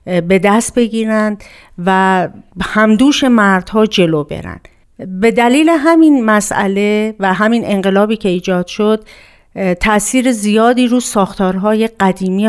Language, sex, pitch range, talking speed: Persian, female, 185-225 Hz, 110 wpm